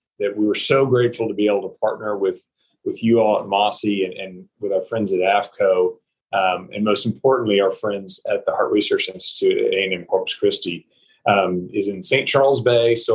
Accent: American